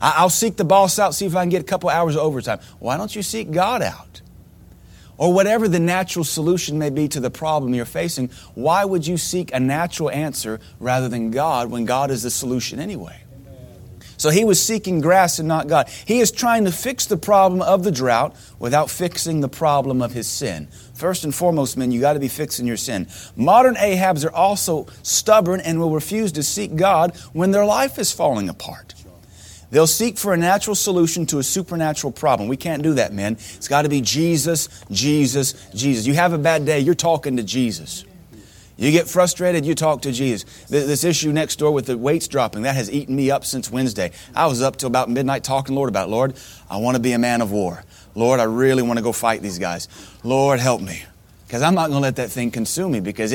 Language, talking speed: English, 225 wpm